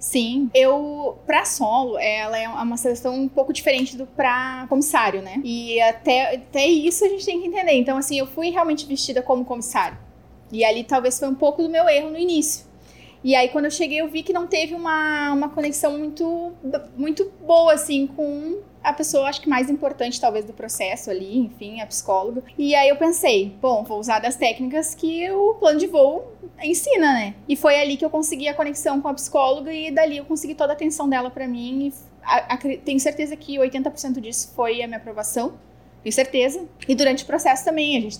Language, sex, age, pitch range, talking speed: Portuguese, female, 10-29, 250-315 Hz, 205 wpm